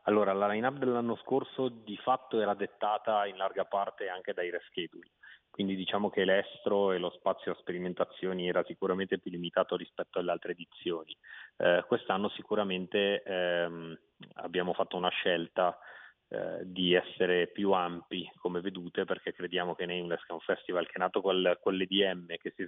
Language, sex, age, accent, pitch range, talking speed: Italian, male, 30-49, native, 90-95 Hz, 165 wpm